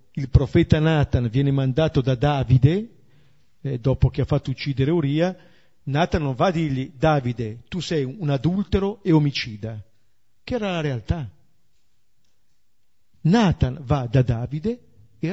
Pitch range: 120-165 Hz